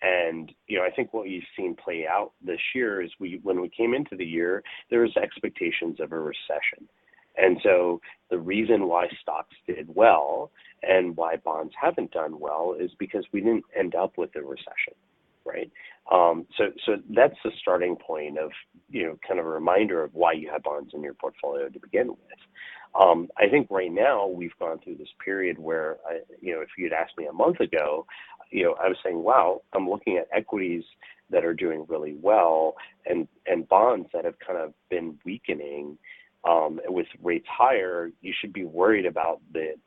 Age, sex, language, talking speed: 30-49, male, English, 200 wpm